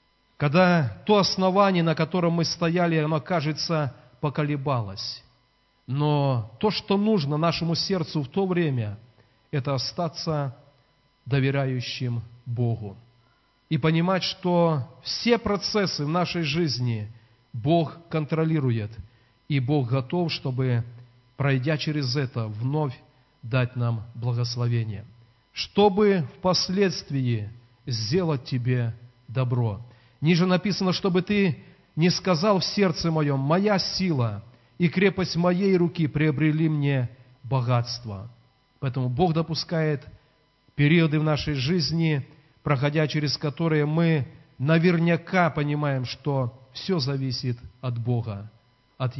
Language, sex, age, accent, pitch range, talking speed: Russian, male, 40-59, native, 125-170 Hz, 105 wpm